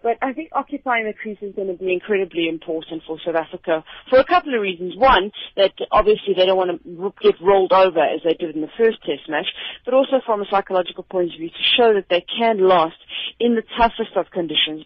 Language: English